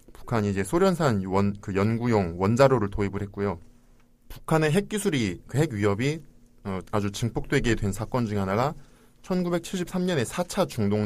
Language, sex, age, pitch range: Korean, male, 20-39, 100-130 Hz